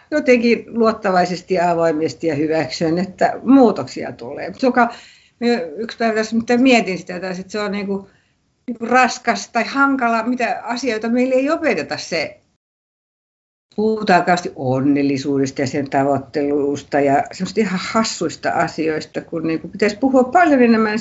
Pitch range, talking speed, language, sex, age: 155-235 Hz, 130 wpm, Finnish, female, 60-79